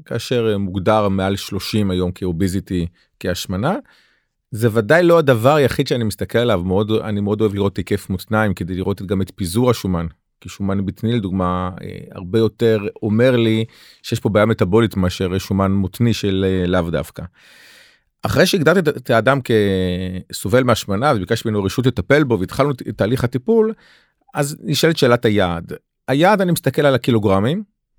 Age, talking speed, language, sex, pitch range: 40-59, 155 wpm, Hebrew, male, 100-135 Hz